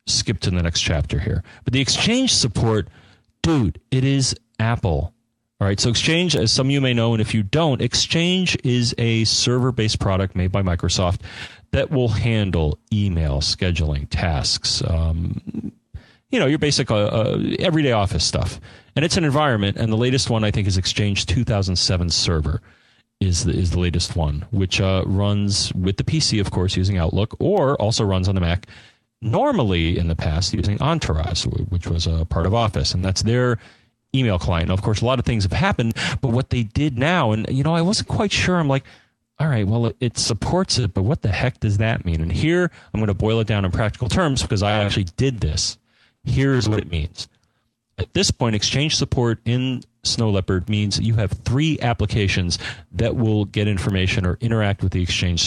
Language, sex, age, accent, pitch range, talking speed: English, male, 30-49, American, 95-125 Hz, 195 wpm